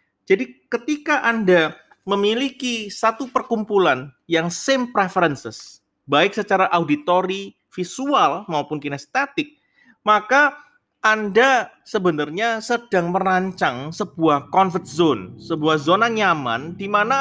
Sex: male